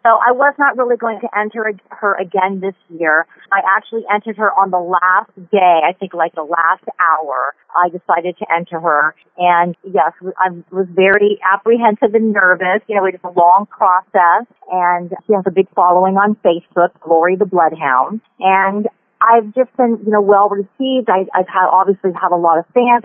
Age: 40-59